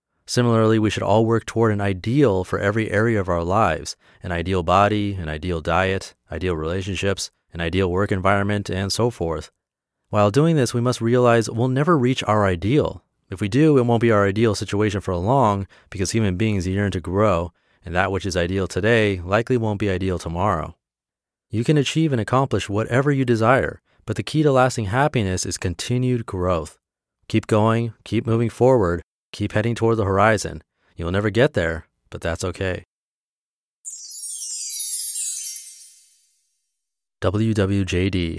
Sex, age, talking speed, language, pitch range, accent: male, 30-49, 160 wpm, English, 90-115 Hz, American